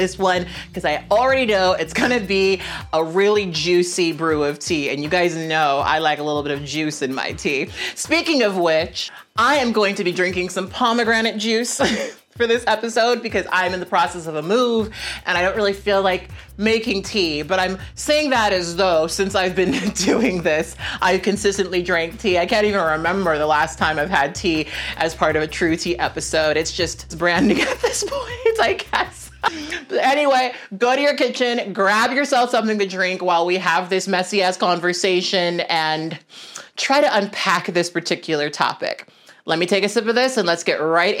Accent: American